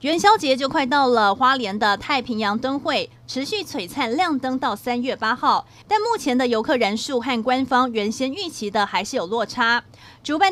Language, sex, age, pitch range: Chinese, female, 30-49, 230-285 Hz